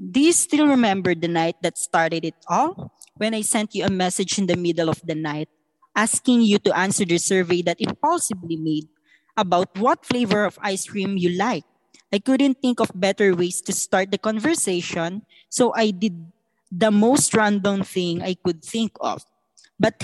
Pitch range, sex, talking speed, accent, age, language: 175-235 Hz, female, 185 wpm, Filipino, 20-39, English